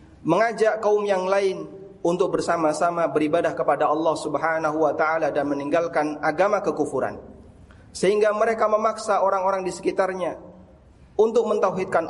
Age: 30-49